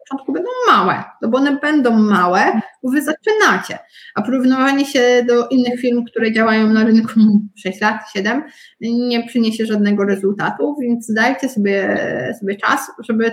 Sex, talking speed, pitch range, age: female, 150 wpm, 205-255 Hz, 20-39